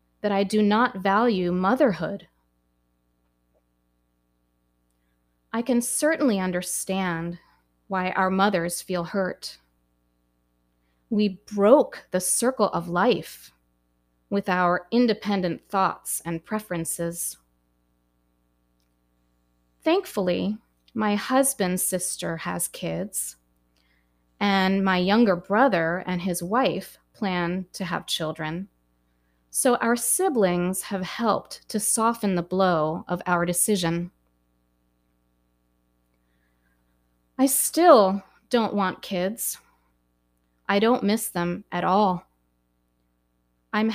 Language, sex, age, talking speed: English, female, 30-49, 95 wpm